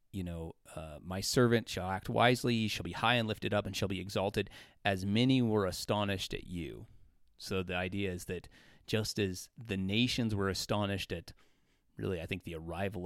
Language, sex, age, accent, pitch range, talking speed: English, male, 30-49, American, 95-115 Hz, 190 wpm